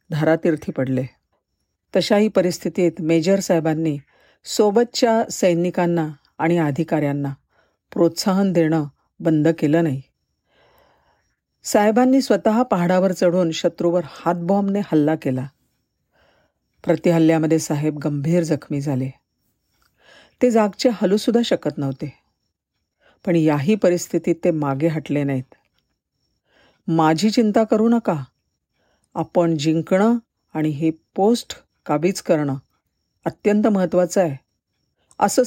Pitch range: 155-190 Hz